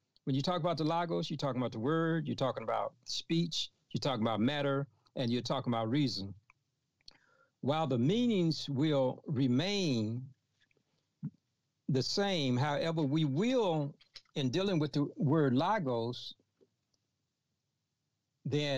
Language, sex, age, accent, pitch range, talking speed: English, male, 60-79, American, 125-160 Hz, 130 wpm